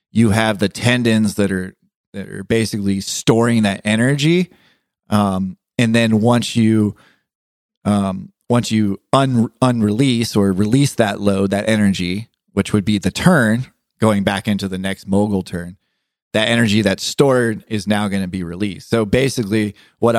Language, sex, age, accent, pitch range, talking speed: English, male, 30-49, American, 95-110 Hz, 160 wpm